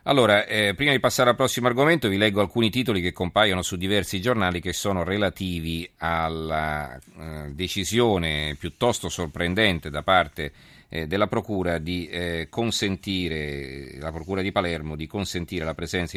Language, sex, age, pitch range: Italian, male, 40-59, 80-100 Hz